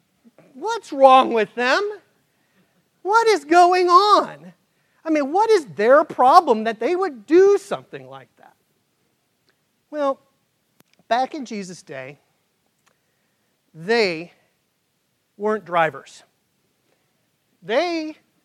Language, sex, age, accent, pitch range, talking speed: English, male, 40-59, American, 175-240 Hz, 100 wpm